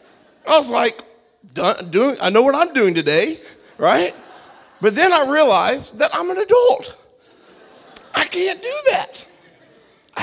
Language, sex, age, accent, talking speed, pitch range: English, male, 40-59, American, 140 wpm, 190-275 Hz